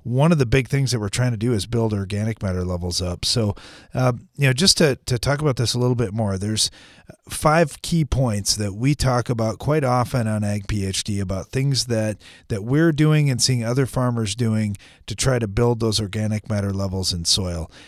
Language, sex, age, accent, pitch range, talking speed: English, male, 40-59, American, 105-130 Hz, 215 wpm